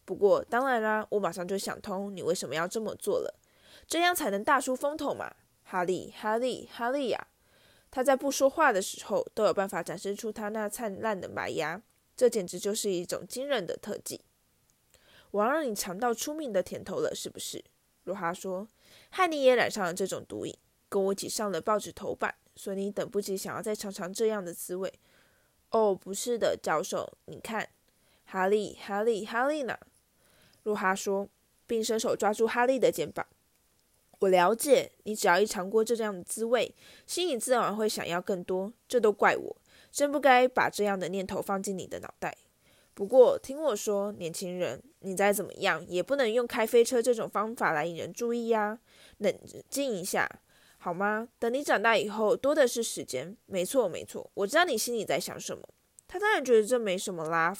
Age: 20-39